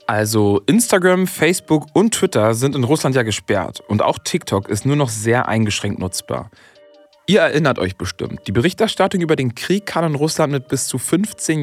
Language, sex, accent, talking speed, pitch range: German, male, German, 180 wpm, 115-160 Hz